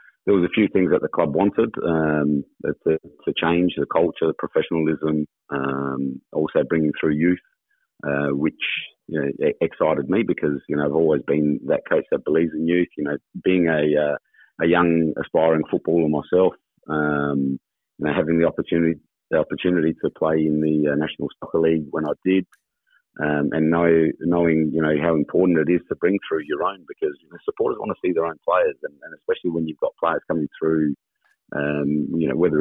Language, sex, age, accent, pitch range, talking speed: English, male, 30-49, Australian, 75-85 Hz, 195 wpm